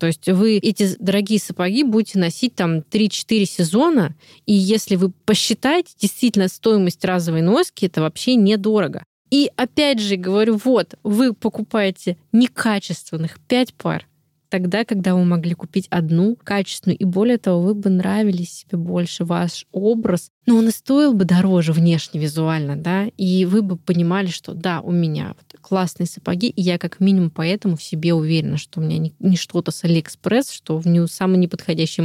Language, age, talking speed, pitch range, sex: Russian, 20-39, 165 wpm, 175-220 Hz, female